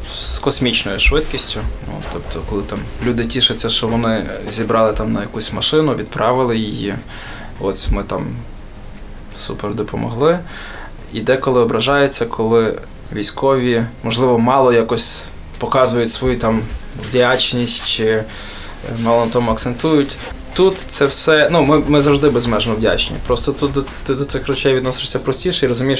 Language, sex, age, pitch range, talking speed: Ukrainian, male, 20-39, 110-140 Hz, 135 wpm